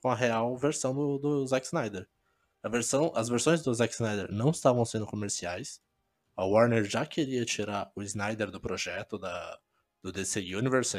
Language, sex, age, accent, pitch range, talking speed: Portuguese, male, 20-39, Brazilian, 105-130 Hz, 175 wpm